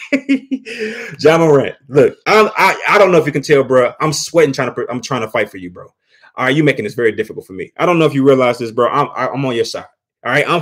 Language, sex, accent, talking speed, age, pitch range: English, male, American, 285 wpm, 30-49, 135-215 Hz